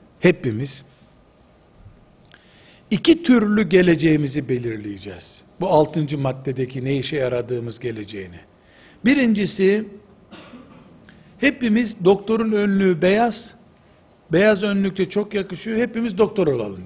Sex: male